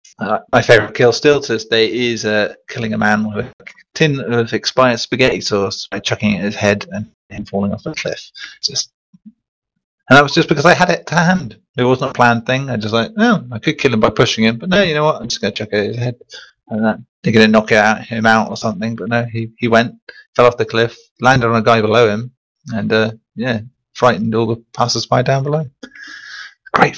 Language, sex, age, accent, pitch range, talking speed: English, male, 30-49, British, 105-130 Hz, 240 wpm